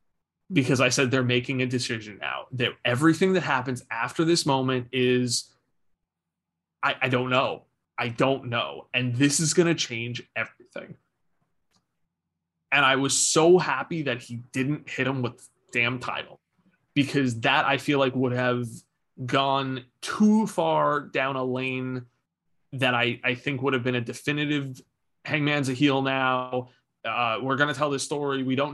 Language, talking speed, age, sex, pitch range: English, 165 wpm, 20-39, male, 125-145 Hz